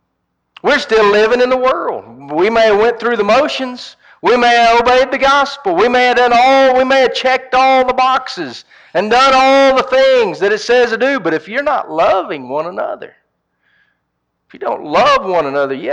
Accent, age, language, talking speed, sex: American, 50-69, English, 205 wpm, male